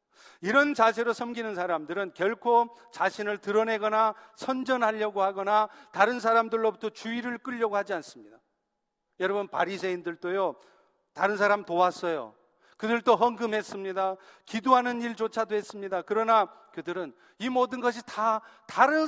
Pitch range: 185-230 Hz